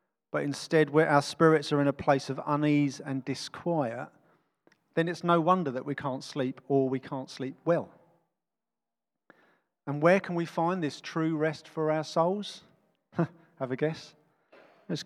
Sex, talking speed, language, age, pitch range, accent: male, 165 wpm, English, 40-59, 135-165 Hz, British